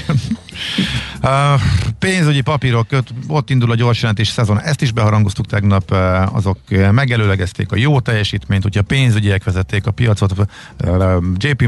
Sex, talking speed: male, 120 wpm